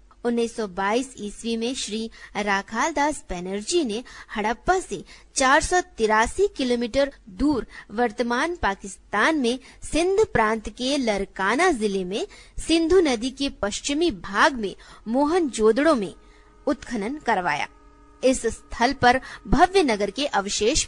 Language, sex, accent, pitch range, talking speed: Hindi, female, native, 210-275 Hz, 120 wpm